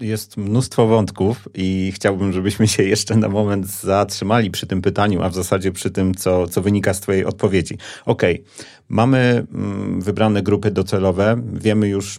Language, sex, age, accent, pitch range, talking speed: Polish, male, 40-59, native, 95-110 Hz, 160 wpm